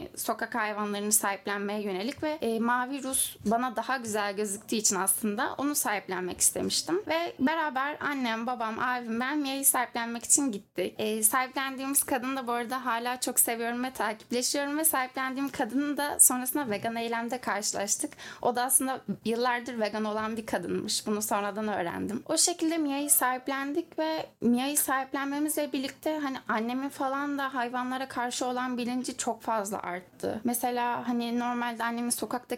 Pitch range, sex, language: 230-275 Hz, female, Turkish